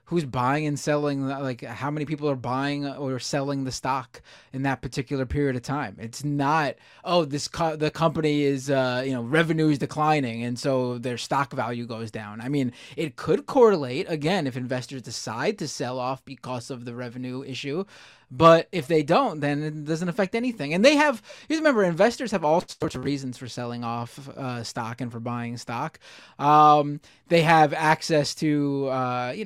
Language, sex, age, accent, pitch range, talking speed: English, male, 20-39, American, 125-160 Hz, 190 wpm